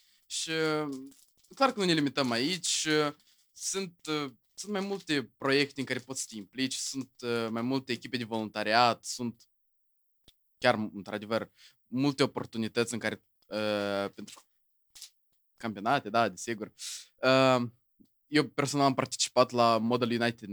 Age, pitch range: 20-39, 110-140 Hz